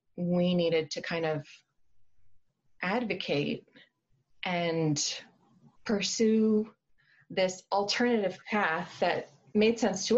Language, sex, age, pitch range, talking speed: English, female, 30-49, 160-200 Hz, 90 wpm